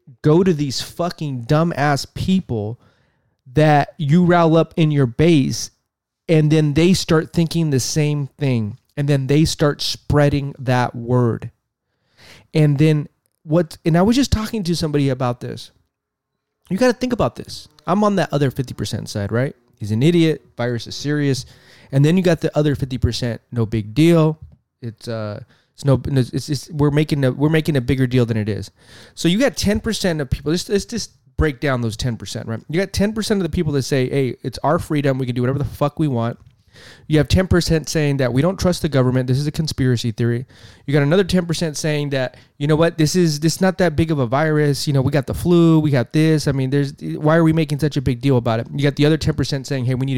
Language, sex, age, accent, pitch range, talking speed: English, male, 20-39, American, 125-165 Hz, 220 wpm